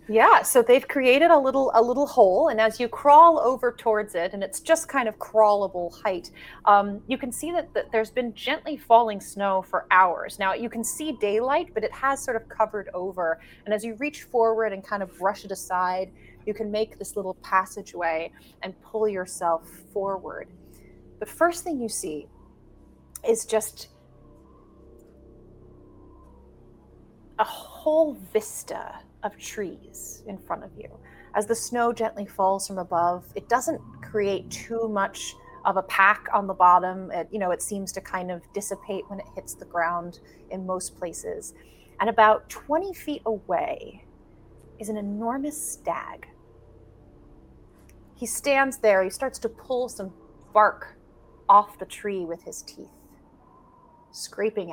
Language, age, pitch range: English, 30-49, 190-245 Hz